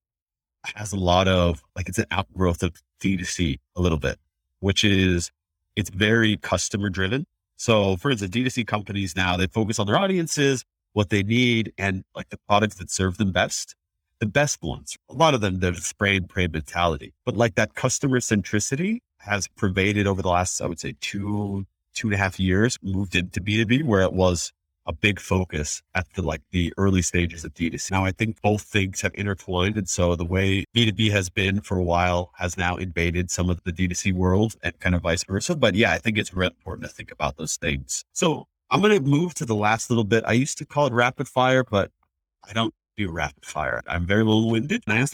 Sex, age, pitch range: male, 40-59, 90-120 Hz